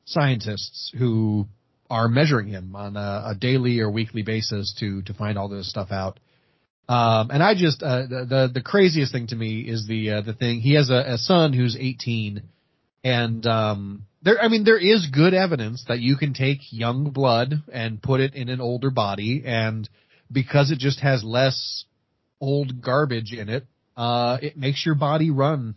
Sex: male